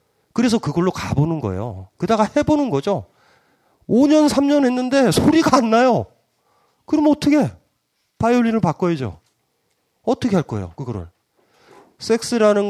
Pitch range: 145-240 Hz